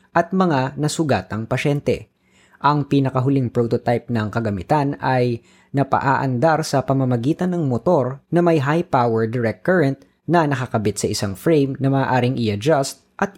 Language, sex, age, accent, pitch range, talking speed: Filipino, female, 20-39, native, 125-155 Hz, 135 wpm